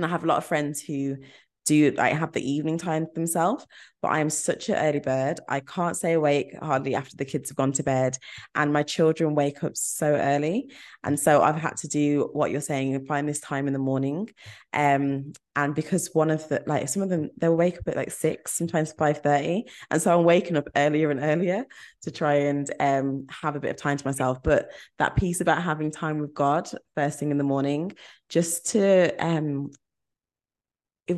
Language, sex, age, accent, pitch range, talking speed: English, female, 20-39, British, 140-160 Hz, 215 wpm